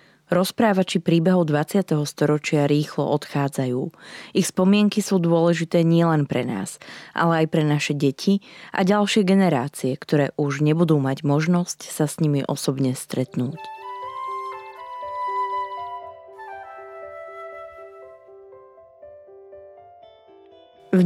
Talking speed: 90 wpm